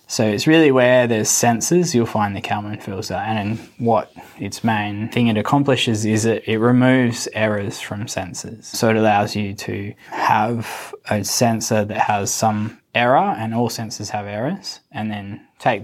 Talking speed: 165 wpm